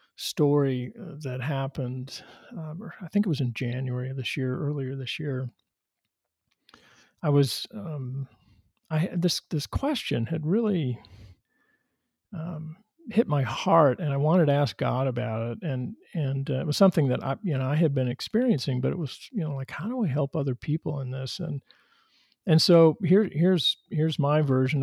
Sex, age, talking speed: male, 50-69, 180 wpm